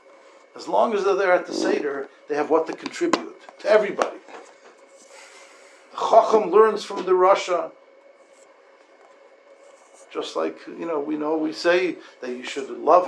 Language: English